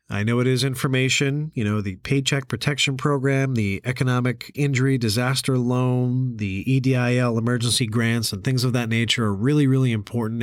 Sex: male